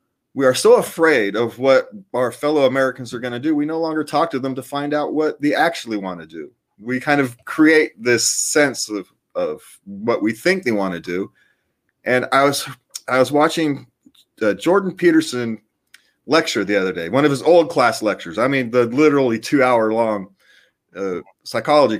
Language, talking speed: English, 195 wpm